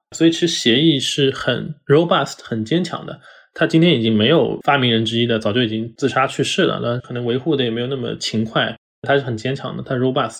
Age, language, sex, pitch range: 20-39, Chinese, male, 115-140 Hz